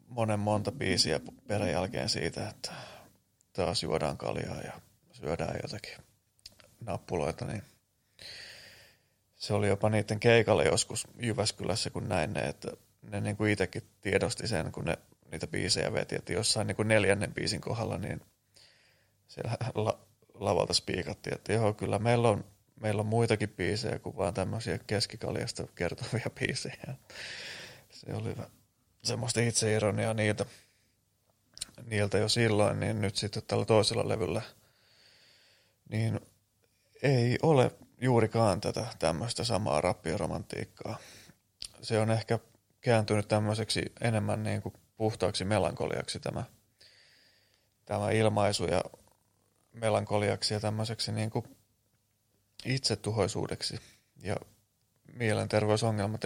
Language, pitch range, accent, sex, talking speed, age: Finnish, 100-115 Hz, native, male, 110 wpm, 30-49